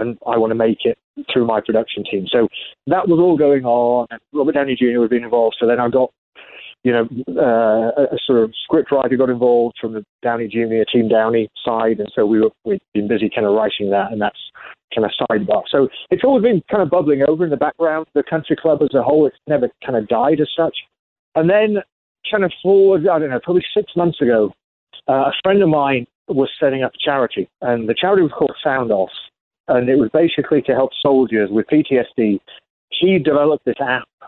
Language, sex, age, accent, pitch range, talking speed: English, male, 30-49, British, 115-150 Hz, 215 wpm